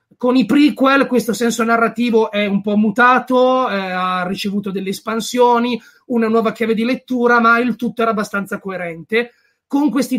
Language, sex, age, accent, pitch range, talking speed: Italian, male, 30-49, native, 210-250 Hz, 165 wpm